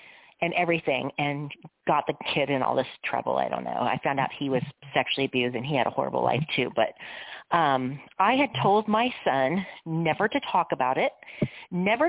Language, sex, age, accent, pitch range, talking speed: English, female, 40-59, American, 150-190 Hz, 200 wpm